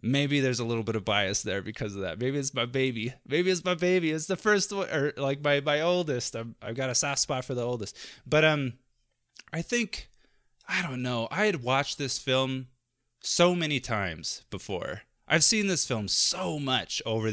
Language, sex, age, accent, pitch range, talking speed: English, male, 20-39, American, 110-140 Hz, 210 wpm